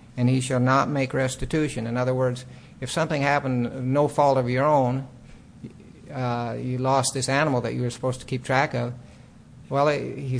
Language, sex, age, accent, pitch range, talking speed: English, male, 60-79, American, 130-150 Hz, 185 wpm